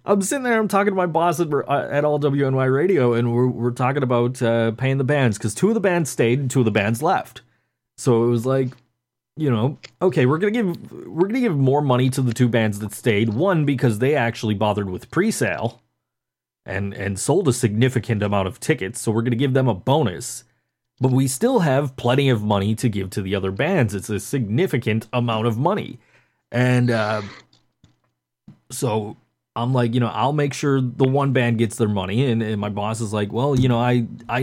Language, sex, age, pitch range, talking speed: English, male, 30-49, 115-140 Hz, 215 wpm